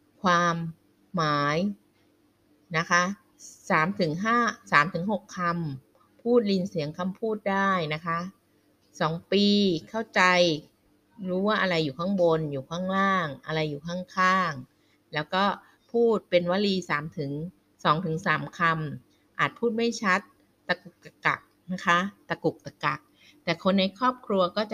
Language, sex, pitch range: Thai, female, 155-195 Hz